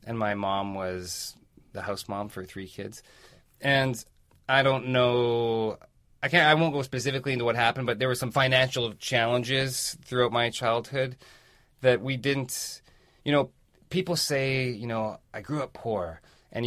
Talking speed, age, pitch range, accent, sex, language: 165 wpm, 30-49, 105-135 Hz, American, male, English